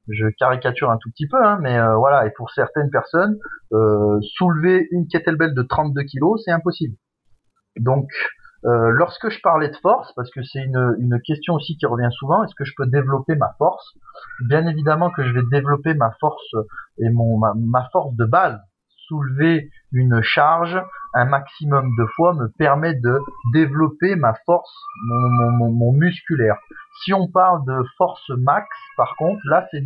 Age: 30-49